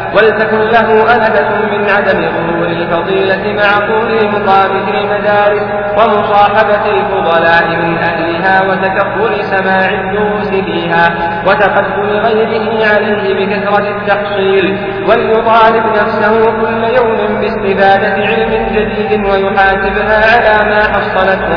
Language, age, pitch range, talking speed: Arabic, 40-59, 195-210 Hz, 95 wpm